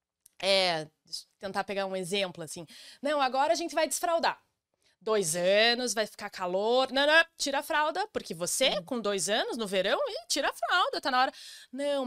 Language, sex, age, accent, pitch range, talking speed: Portuguese, female, 20-39, Brazilian, 200-250 Hz, 180 wpm